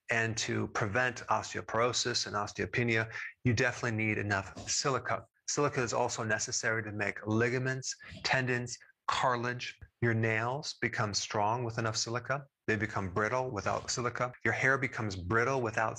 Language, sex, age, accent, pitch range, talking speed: English, male, 30-49, American, 110-130 Hz, 140 wpm